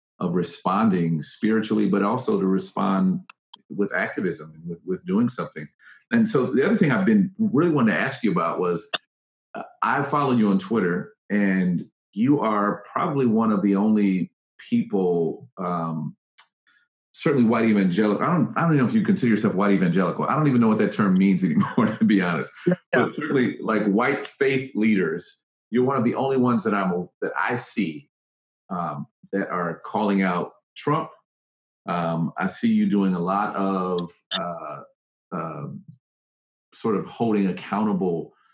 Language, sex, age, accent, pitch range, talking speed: English, male, 40-59, American, 90-135 Hz, 165 wpm